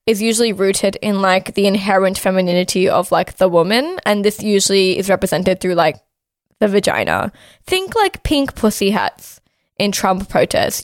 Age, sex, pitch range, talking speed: 10-29, female, 190-230 Hz, 160 wpm